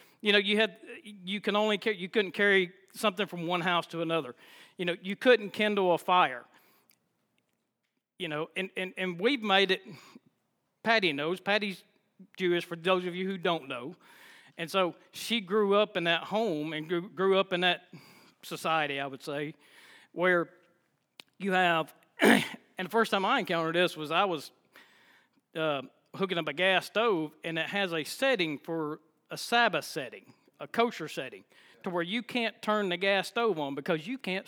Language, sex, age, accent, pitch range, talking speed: English, male, 40-59, American, 170-220 Hz, 180 wpm